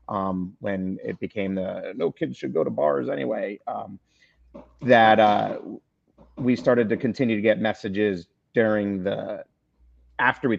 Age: 30-49